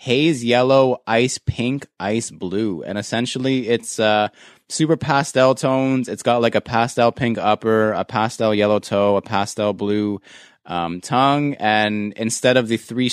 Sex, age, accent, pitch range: male, 20-39, American, 105-120 Hz